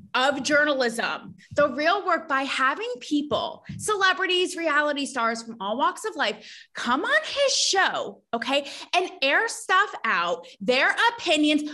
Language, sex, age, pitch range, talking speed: English, female, 20-39, 230-345 Hz, 140 wpm